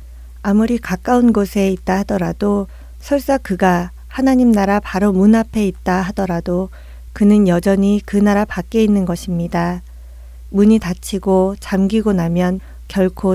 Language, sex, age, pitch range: Korean, female, 40-59, 180-210 Hz